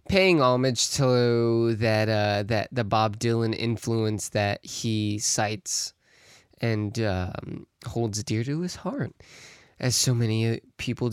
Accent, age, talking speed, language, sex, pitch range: American, 20-39, 130 wpm, English, male, 110-130 Hz